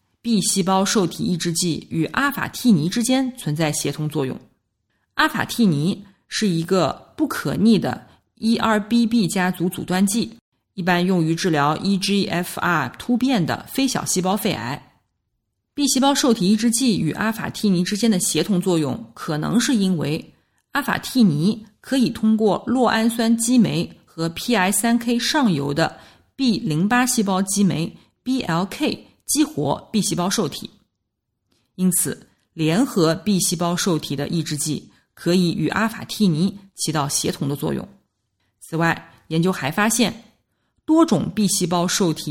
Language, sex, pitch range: Chinese, female, 160-225 Hz